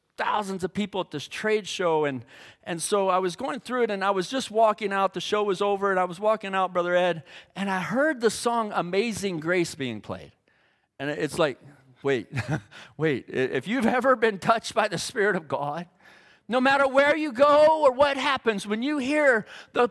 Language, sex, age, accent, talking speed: English, male, 40-59, American, 205 wpm